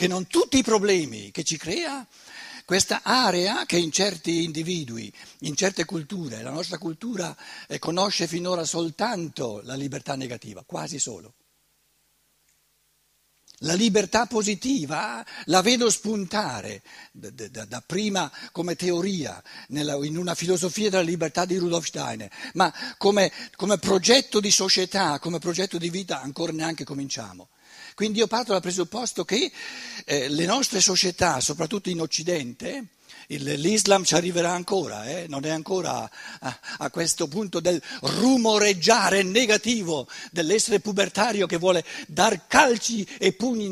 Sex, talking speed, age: male, 135 wpm, 60-79